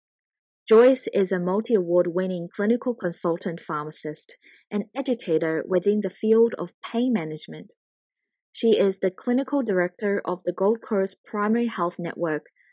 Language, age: English, 20-39